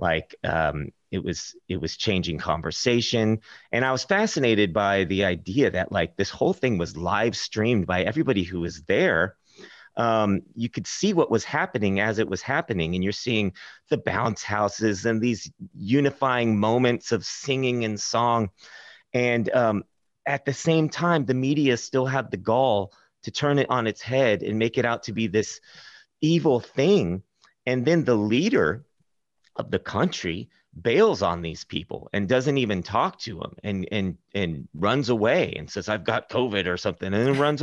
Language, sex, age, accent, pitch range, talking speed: English, male, 30-49, American, 95-125 Hz, 180 wpm